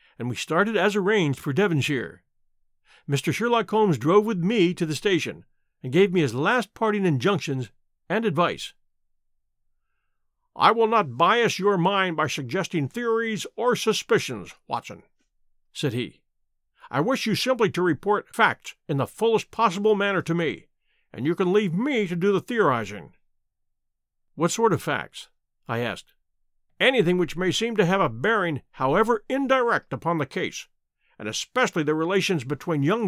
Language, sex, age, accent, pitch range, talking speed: English, male, 50-69, American, 155-215 Hz, 160 wpm